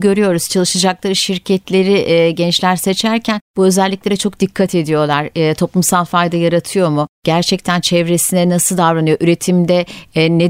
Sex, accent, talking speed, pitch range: female, native, 130 wpm, 175-215 Hz